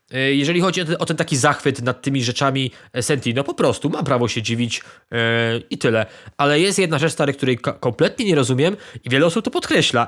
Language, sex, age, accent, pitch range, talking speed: Polish, male, 20-39, native, 135-180 Hz, 215 wpm